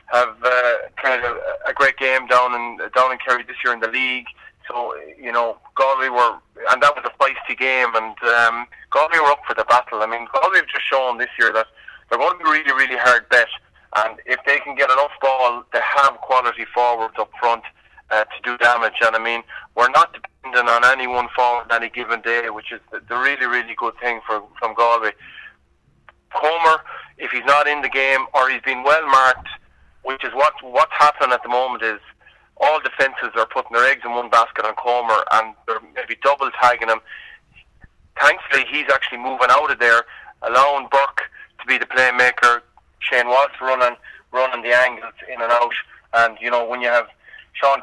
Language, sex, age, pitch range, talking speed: English, male, 20-39, 120-135 Hz, 200 wpm